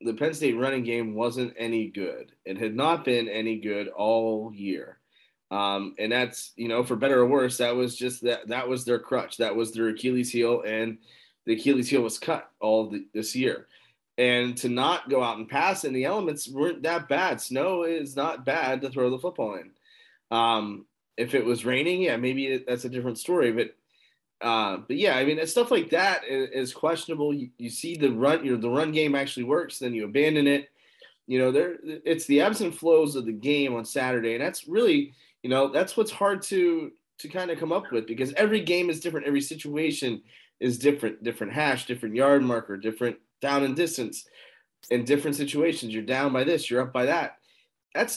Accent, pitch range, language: American, 120-160 Hz, English